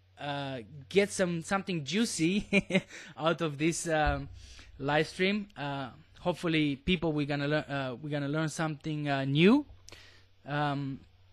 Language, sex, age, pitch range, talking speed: English, male, 20-39, 140-180 Hz, 130 wpm